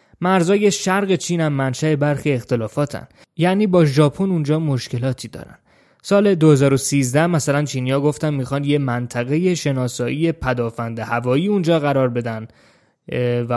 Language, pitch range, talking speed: Persian, 125-160 Hz, 120 wpm